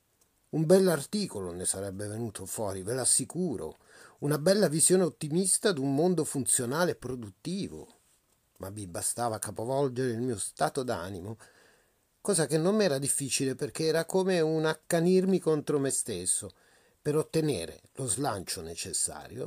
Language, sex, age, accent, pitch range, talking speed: Italian, male, 40-59, native, 125-190 Hz, 135 wpm